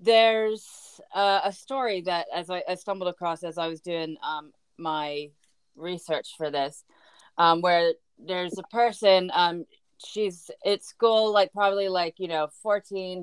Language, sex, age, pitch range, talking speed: English, female, 20-39, 170-210 Hz, 155 wpm